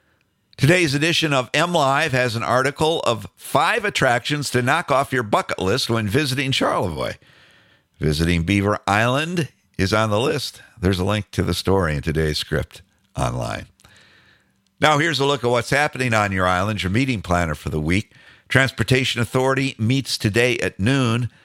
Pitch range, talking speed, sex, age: 90-125 Hz, 160 wpm, male, 50-69